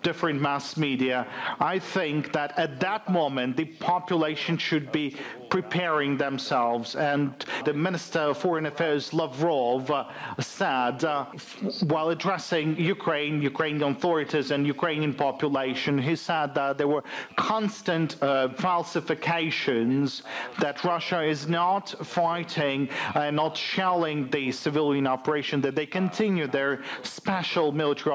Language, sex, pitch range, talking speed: English, male, 140-165 Hz, 130 wpm